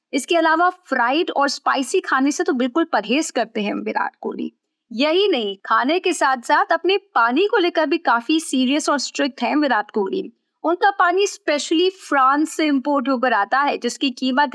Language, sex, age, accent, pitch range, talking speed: Hindi, female, 50-69, native, 255-345 Hz, 145 wpm